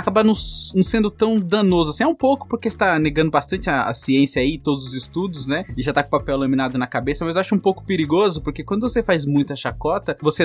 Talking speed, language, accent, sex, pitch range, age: 255 wpm, Portuguese, Brazilian, male, 135-190 Hz, 20-39